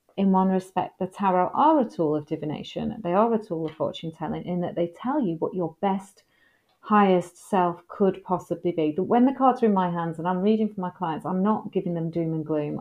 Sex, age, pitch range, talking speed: female, 30-49, 165-215 Hz, 240 wpm